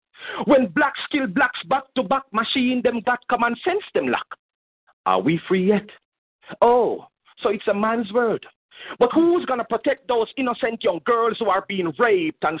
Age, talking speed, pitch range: 40-59, 185 wpm, 180-250 Hz